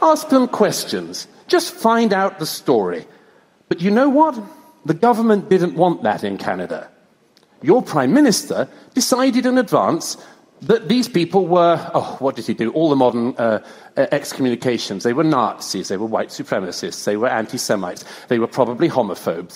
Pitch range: 130-210 Hz